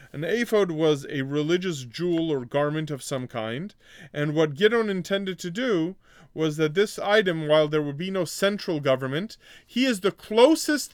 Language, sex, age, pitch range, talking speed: English, male, 30-49, 150-205 Hz, 175 wpm